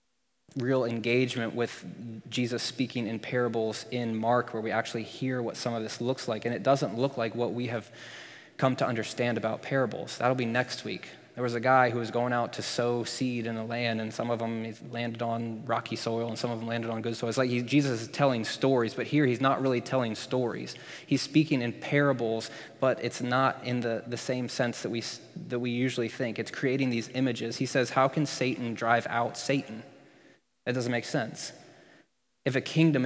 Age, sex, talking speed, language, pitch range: 20-39, male, 210 wpm, English, 115-135 Hz